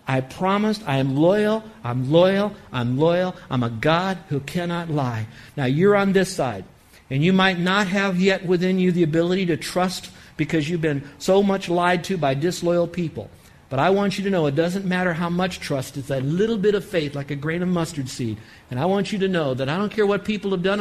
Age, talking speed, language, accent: 60-79, 230 wpm, English, American